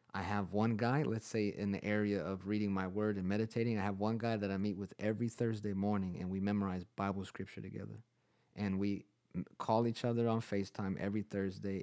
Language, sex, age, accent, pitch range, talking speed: English, male, 30-49, American, 95-110 Hz, 210 wpm